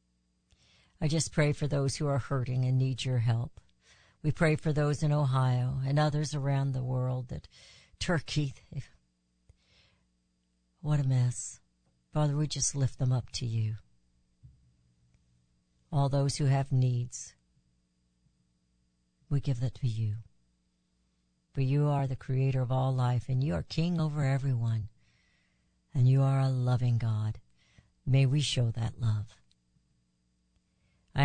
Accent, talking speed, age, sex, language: American, 140 wpm, 60-79, female, English